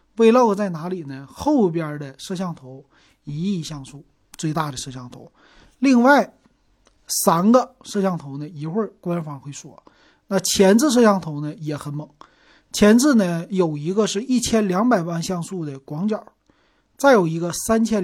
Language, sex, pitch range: Chinese, male, 150-210 Hz